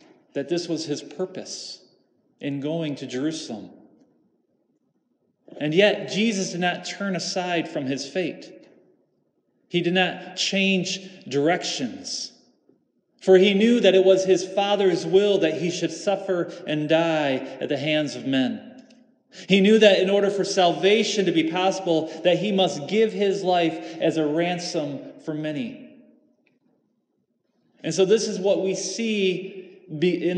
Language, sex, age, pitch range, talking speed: English, male, 30-49, 155-190 Hz, 145 wpm